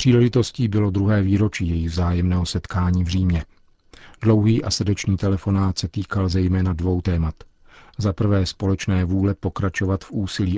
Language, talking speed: Czech, 140 wpm